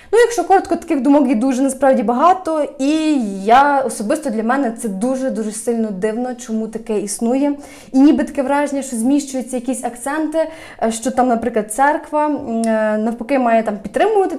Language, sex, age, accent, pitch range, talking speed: Ukrainian, female, 20-39, native, 230-285 Hz, 155 wpm